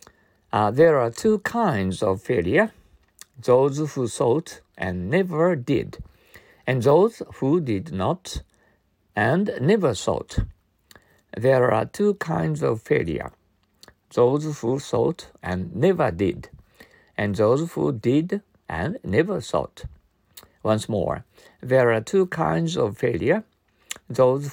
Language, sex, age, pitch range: Japanese, male, 60-79, 95-140 Hz